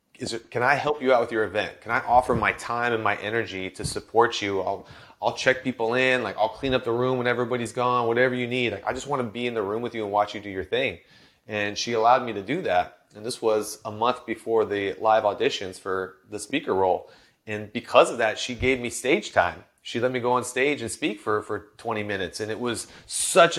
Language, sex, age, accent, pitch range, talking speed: English, male, 30-49, American, 105-125 Hz, 255 wpm